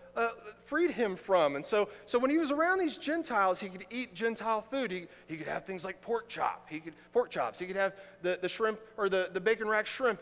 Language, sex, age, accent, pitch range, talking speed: English, male, 40-59, American, 175-245 Hz, 245 wpm